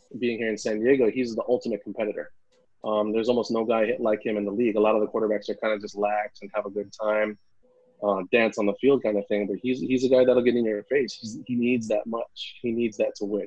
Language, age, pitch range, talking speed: English, 30-49, 105-125 Hz, 280 wpm